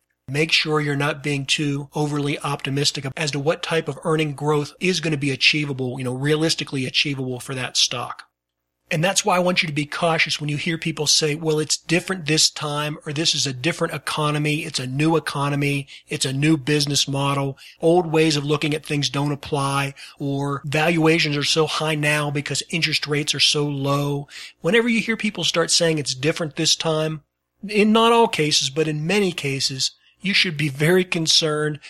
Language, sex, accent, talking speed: English, male, American, 195 wpm